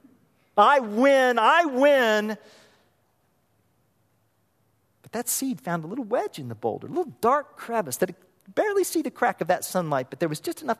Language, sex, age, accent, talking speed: English, male, 40-59, American, 185 wpm